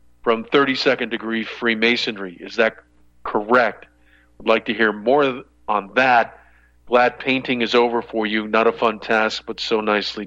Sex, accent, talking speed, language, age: male, American, 160 wpm, English, 40-59